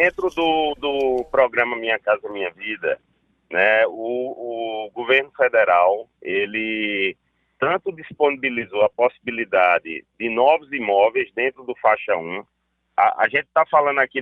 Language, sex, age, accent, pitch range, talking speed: Portuguese, male, 40-59, Brazilian, 120-175 Hz, 130 wpm